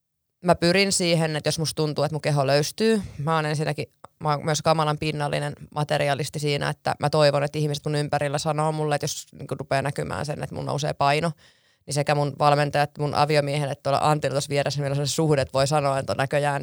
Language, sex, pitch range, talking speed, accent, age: Finnish, female, 145-155 Hz, 215 wpm, native, 20-39